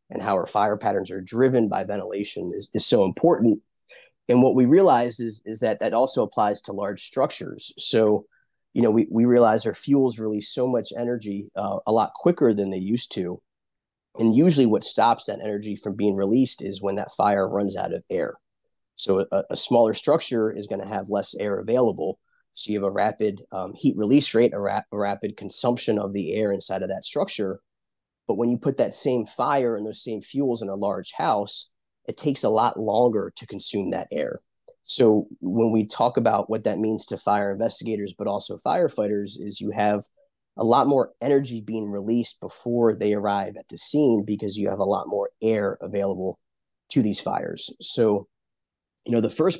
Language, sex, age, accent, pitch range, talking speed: English, male, 20-39, American, 105-120 Hz, 200 wpm